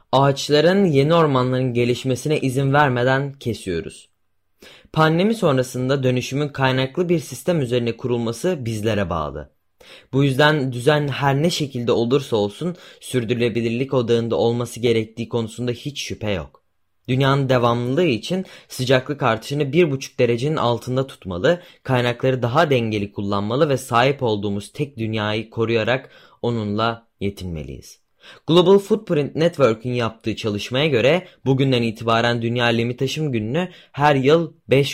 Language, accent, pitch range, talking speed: Turkish, native, 115-145 Hz, 115 wpm